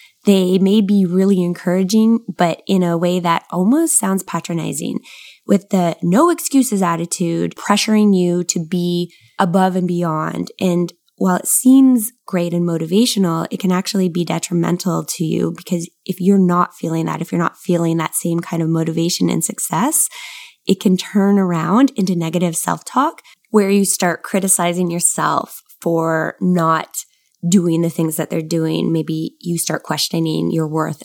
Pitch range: 165-200 Hz